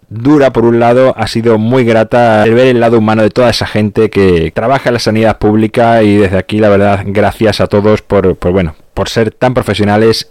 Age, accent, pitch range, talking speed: 20-39, Spanish, 105-130 Hz, 210 wpm